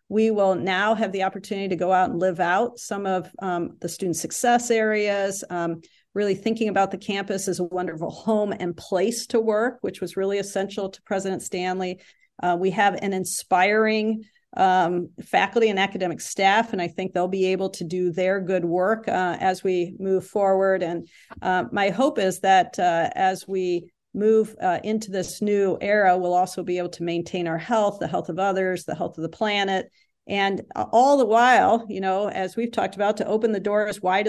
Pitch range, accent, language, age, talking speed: 180-210 Hz, American, English, 50-69, 200 wpm